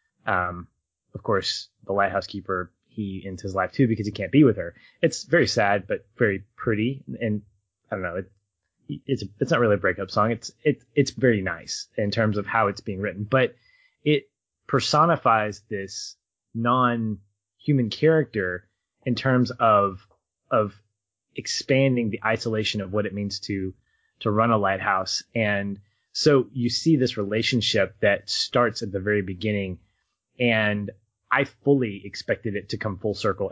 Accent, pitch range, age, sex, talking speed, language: American, 100-120 Hz, 20-39, male, 165 wpm, English